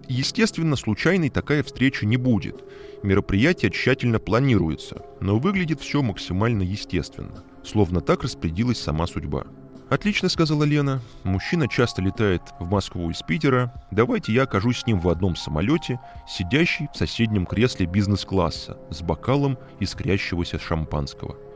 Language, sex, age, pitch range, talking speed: Russian, male, 20-39, 90-140 Hz, 130 wpm